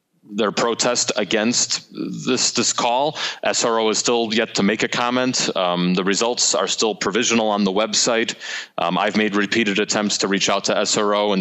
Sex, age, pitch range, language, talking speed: male, 30-49, 95-110 Hz, English, 180 wpm